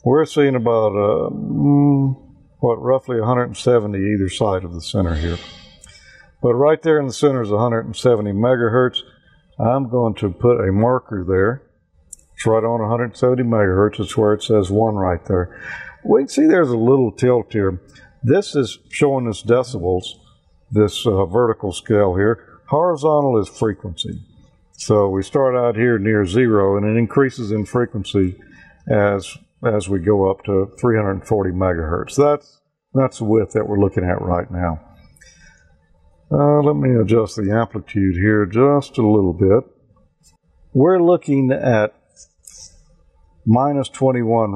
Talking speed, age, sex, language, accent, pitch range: 145 wpm, 50-69, male, English, American, 100-130 Hz